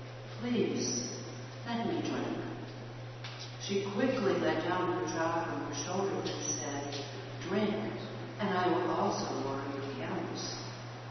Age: 60-79